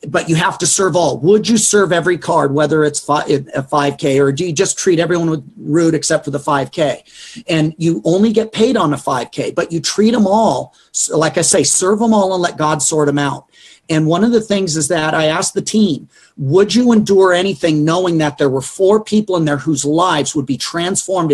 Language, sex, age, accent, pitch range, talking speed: English, male, 40-59, American, 150-195 Hz, 230 wpm